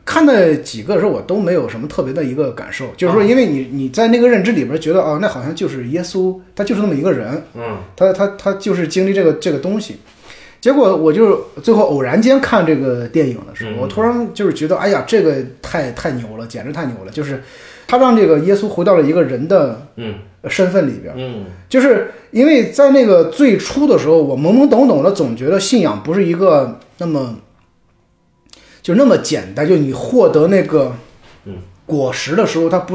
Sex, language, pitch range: male, Chinese, 125-195 Hz